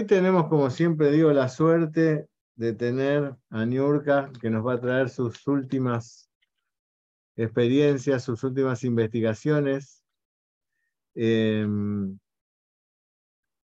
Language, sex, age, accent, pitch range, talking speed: Spanish, male, 50-69, Argentinian, 115-155 Hz, 100 wpm